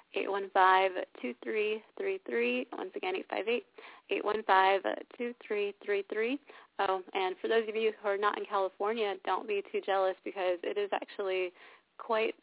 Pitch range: 185-285 Hz